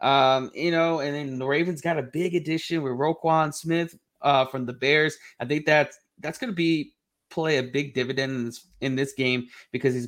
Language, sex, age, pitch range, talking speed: English, male, 30-49, 130-145 Hz, 215 wpm